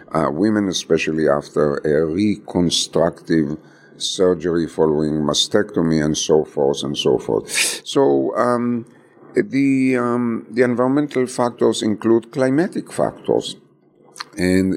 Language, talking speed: English, 105 wpm